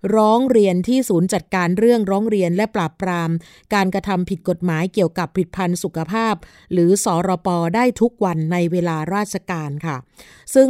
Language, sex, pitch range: Thai, female, 180-215 Hz